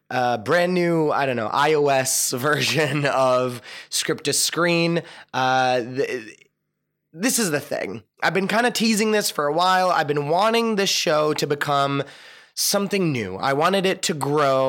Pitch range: 130-175 Hz